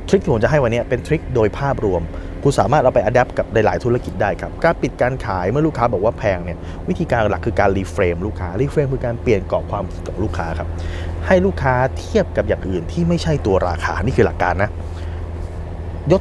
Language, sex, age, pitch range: Thai, male, 20-39, 85-110 Hz